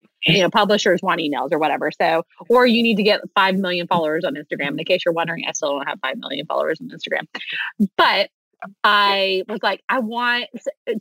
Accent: American